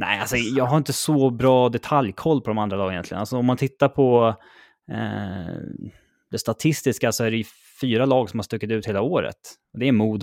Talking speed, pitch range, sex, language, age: 205 wpm, 90-125 Hz, male, Swedish, 20-39